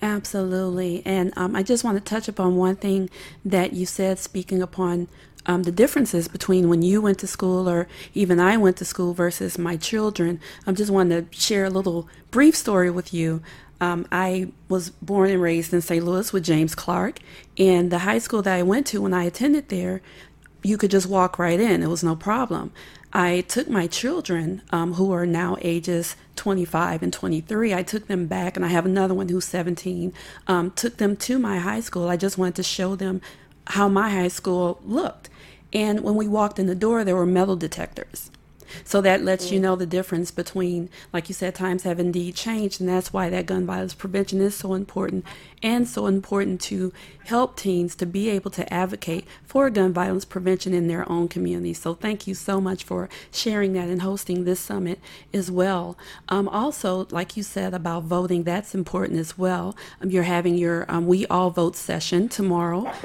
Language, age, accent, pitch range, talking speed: English, 40-59, American, 175-195 Hz, 200 wpm